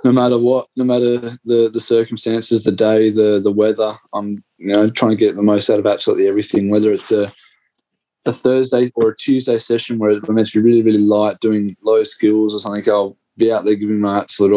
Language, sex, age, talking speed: English, male, 20-39, 220 wpm